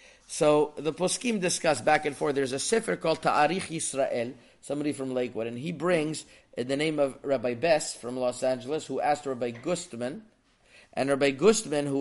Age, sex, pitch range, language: 30-49, male, 140-170 Hz, English